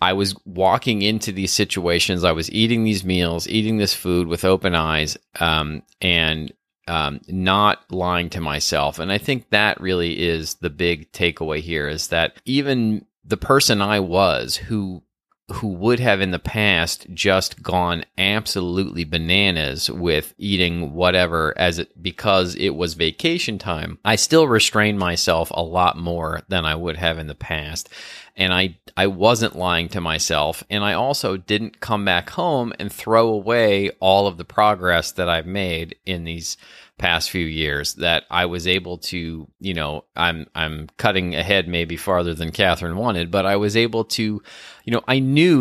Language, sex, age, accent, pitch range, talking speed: English, male, 30-49, American, 85-105 Hz, 170 wpm